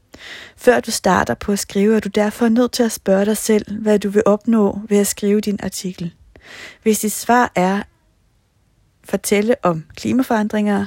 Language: Danish